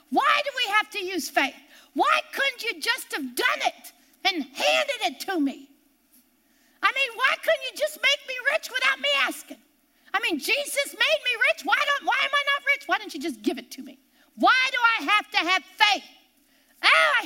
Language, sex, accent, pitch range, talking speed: English, female, American, 285-370 Hz, 210 wpm